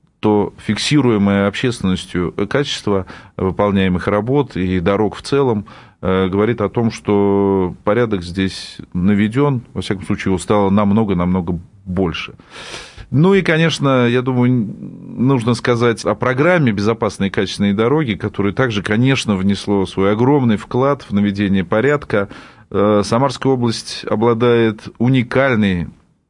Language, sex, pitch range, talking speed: Russian, male, 100-120 Hz, 120 wpm